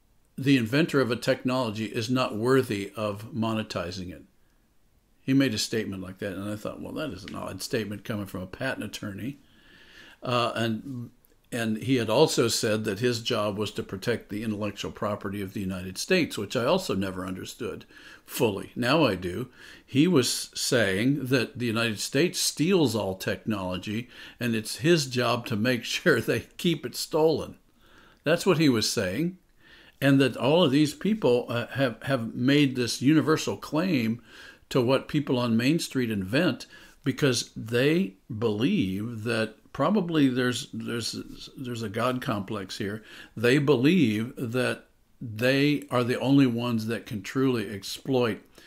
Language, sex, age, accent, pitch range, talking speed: English, male, 50-69, American, 105-130 Hz, 160 wpm